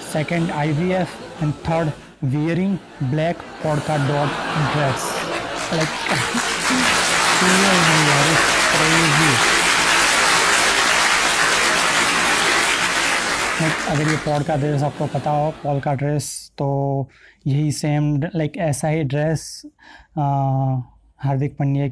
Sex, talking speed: male, 95 wpm